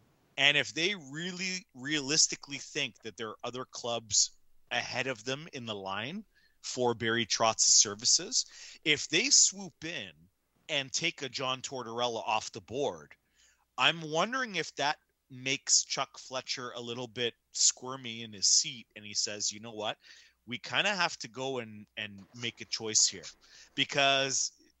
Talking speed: 160 wpm